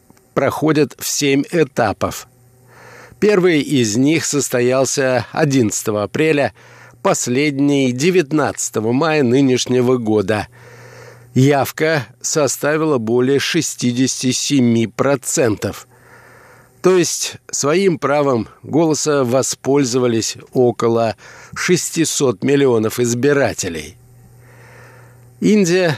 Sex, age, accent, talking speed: male, 50-69, native, 70 wpm